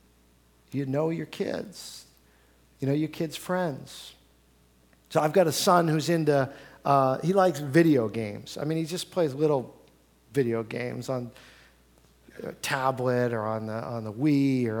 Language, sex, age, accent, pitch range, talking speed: English, male, 50-69, American, 125-190 Hz, 160 wpm